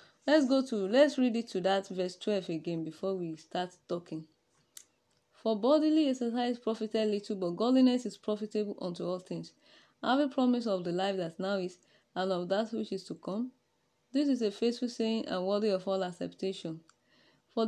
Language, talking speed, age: English, 185 wpm, 20-39